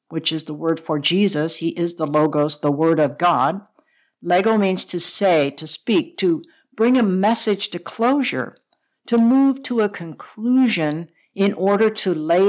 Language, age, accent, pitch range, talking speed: English, 60-79, American, 160-215 Hz, 170 wpm